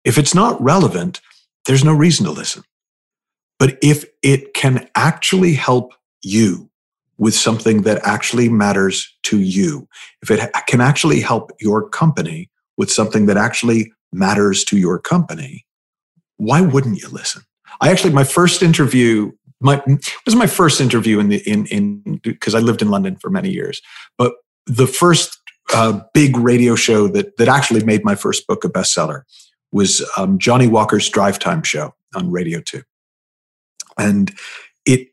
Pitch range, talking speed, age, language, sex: 110-175 Hz, 155 wpm, 50-69, English, male